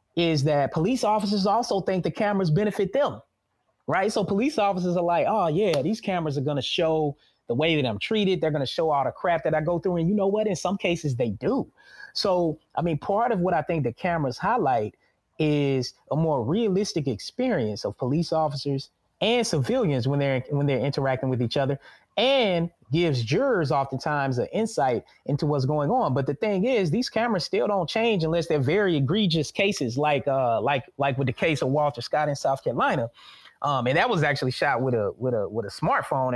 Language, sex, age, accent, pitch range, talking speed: English, male, 20-39, American, 130-175 Hz, 210 wpm